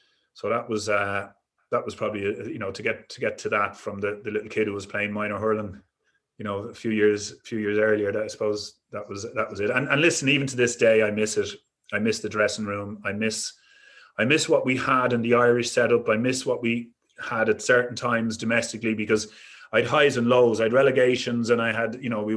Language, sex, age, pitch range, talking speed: English, male, 30-49, 105-125 Hz, 250 wpm